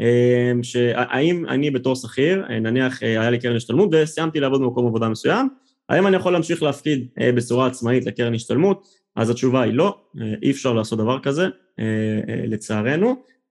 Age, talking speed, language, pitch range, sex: 20-39, 150 wpm, Hebrew, 115-140 Hz, male